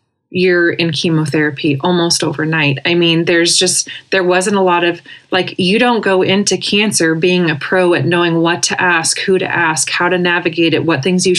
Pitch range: 160-180 Hz